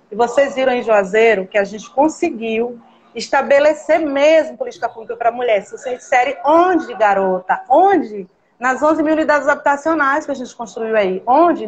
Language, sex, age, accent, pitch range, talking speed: Portuguese, female, 30-49, Brazilian, 220-275 Hz, 165 wpm